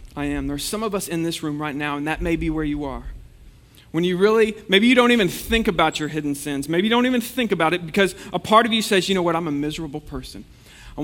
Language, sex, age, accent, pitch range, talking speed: English, male, 40-59, American, 160-215 Hz, 285 wpm